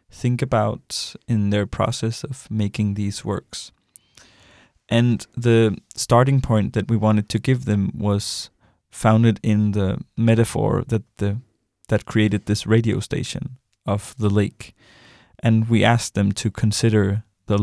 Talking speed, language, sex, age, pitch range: 140 wpm, English, male, 20-39, 100-115 Hz